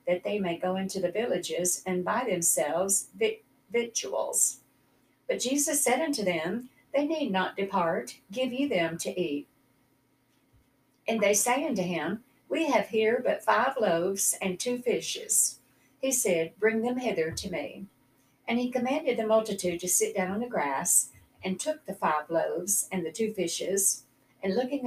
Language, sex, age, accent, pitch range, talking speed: English, female, 60-79, American, 165-220 Hz, 165 wpm